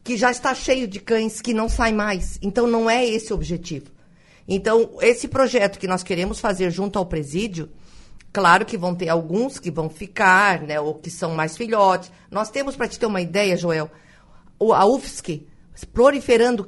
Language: Portuguese